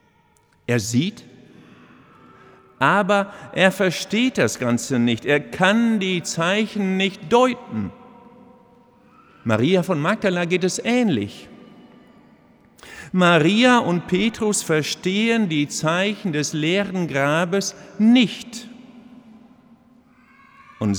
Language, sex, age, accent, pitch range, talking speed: German, male, 50-69, German, 120-190 Hz, 90 wpm